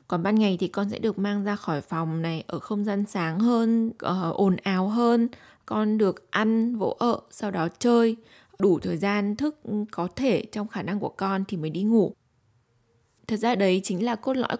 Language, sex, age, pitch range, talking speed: Vietnamese, female, 20-39, 180-225 Hz, 205 wpm